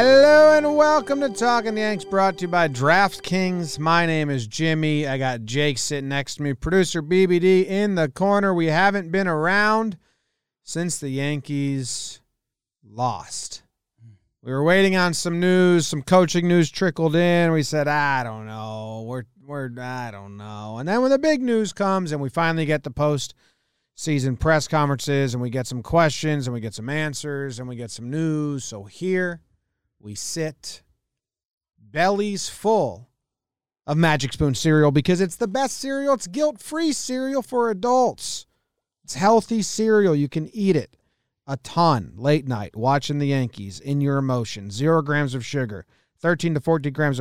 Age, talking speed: 30-49, 170 wpm